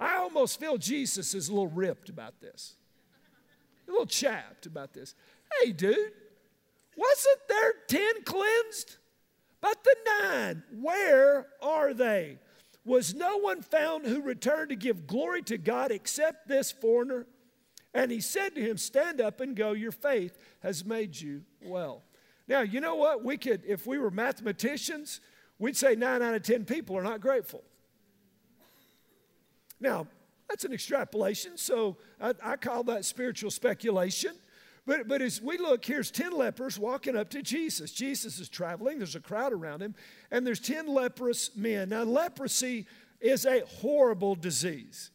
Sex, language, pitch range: male, English, 215-275 Hz